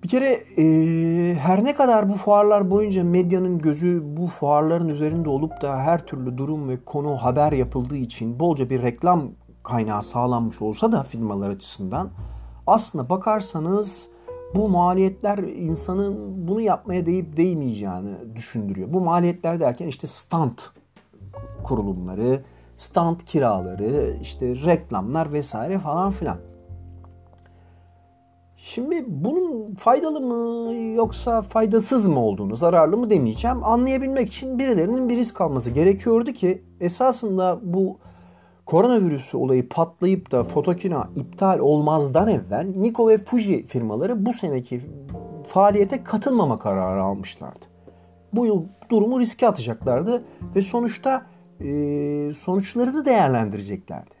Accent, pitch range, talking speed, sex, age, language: native, 125-210 Hz, 115 wpm, male, 50-69, Turkish